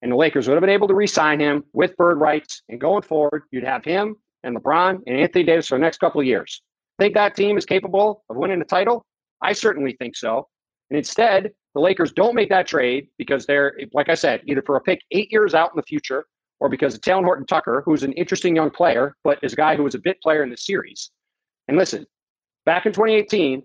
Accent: American